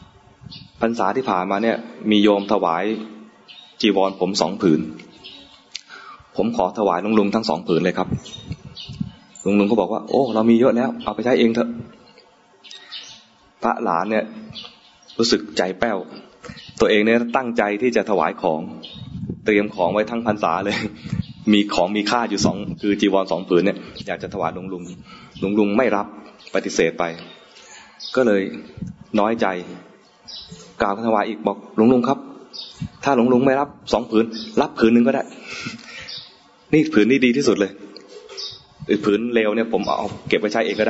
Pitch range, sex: 100-125 Hz, male